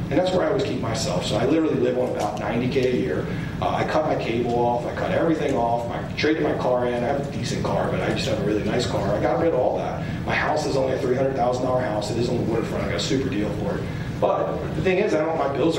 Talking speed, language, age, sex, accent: 295 wpm, English, 40-59, male, American